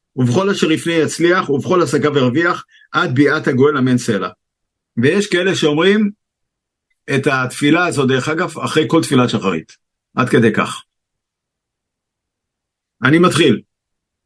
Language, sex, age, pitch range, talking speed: Hebrew, male, 50-69, 130-175 Hz, 120 wpm